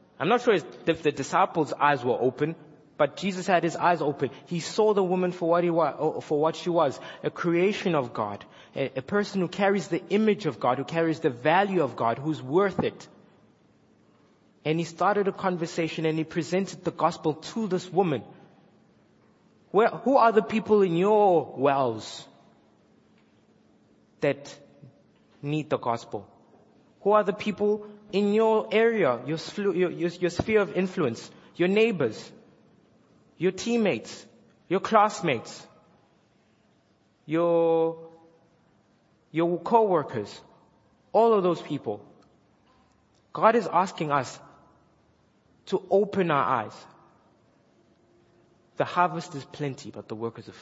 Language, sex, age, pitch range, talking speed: English, male, 20-39, 150-195 Hz, 135 wpm